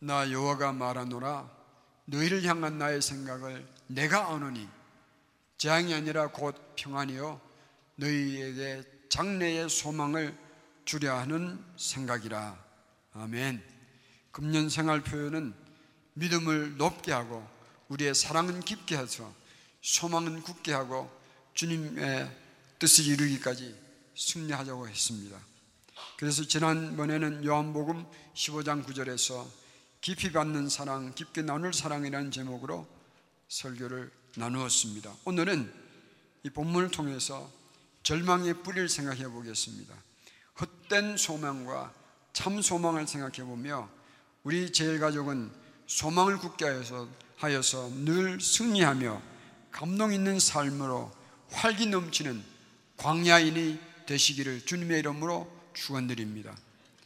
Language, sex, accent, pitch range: Korean, male, native, 130-160 Hz